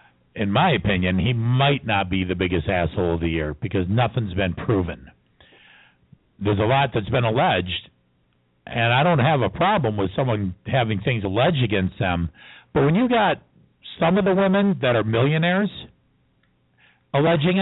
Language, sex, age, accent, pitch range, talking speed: English, male, 50-69, American, 85-135 Hz, 165 wpm